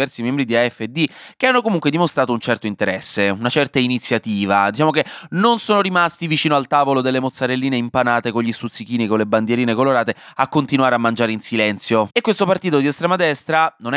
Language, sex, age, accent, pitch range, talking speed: Italian, male, 20-39, native, 120-190 Hz, 195 wpm